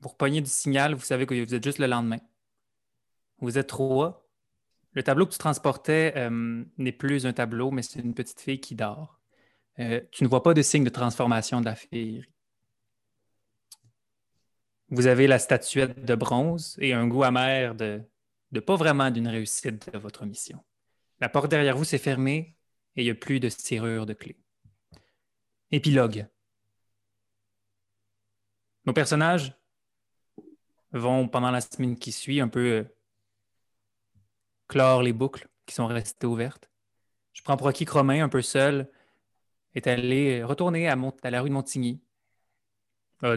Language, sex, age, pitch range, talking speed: French, male, 20-39, 110-135 Hz, 165 wpm